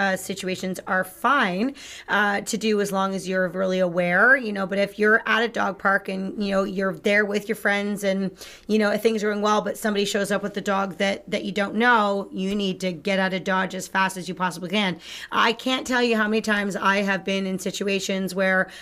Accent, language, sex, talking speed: American, English, female, 240 wpm